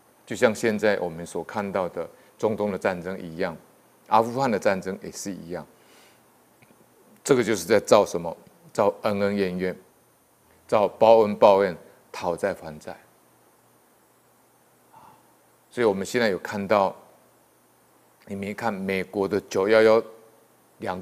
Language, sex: Chinese, male